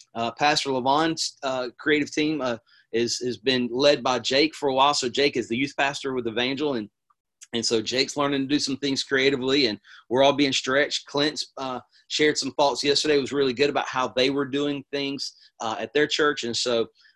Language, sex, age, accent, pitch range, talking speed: English, male, 30-49, American, 120-145 Hz, 215 wpm